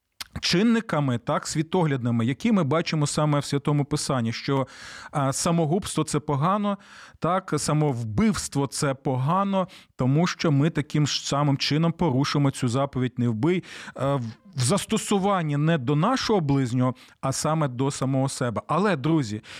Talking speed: 135 wpm